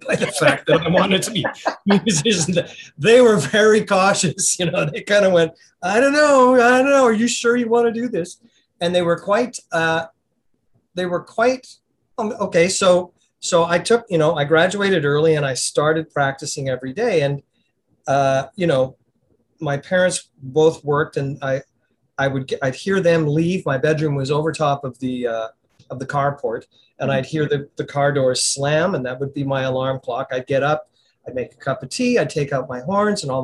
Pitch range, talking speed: 140-185 Hz, 210 wpm